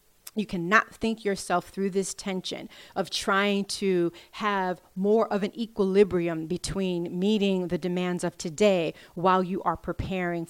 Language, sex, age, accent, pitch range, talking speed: English, female, 30-49, American, 180-225 Hz, 145 wpm